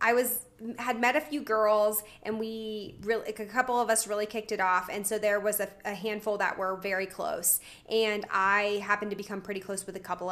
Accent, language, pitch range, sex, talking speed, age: American, English, 195-235 Hz, female, 225 wpm, 20-39